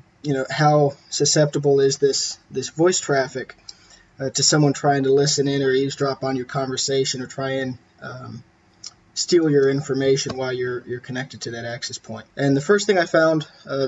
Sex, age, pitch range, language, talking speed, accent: male, 20-39, 130-145 Hz, English, 185 wpm, American